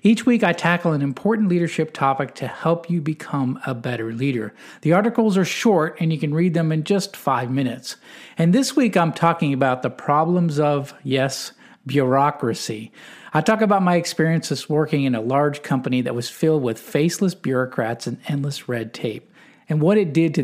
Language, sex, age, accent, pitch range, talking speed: English, male, 50-69, American, 130-170 Hz, 190 wpm